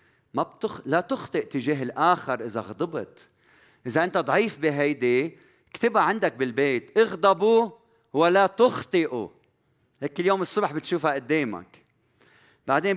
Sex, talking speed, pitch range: male, 110 wpm, 130-195 Hz